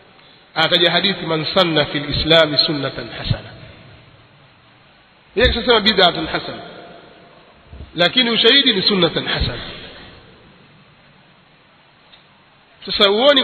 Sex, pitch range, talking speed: male, 170-230 Hz, 75 wpm